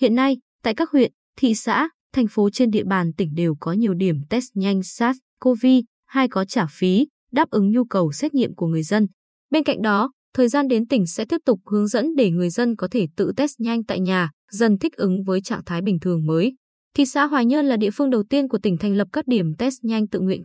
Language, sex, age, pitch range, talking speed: Vietnamese, female, 20-39, 190-255 Hz, 245 wpm